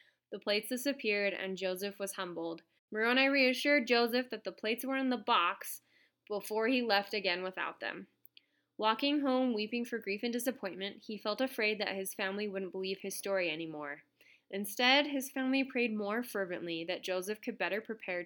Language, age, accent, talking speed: English, 20-39, American, 170 wpm